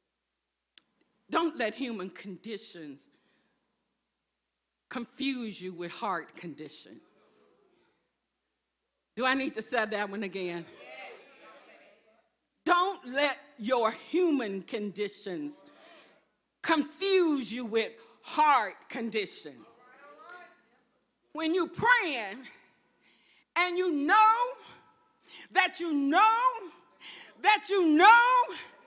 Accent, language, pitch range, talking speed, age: American, English, 220-355 Hz, 80 wpm, 40-59